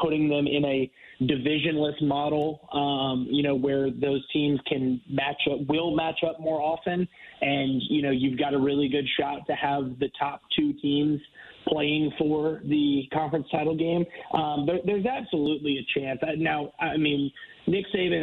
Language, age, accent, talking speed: English, 20-39, American, 170 wpm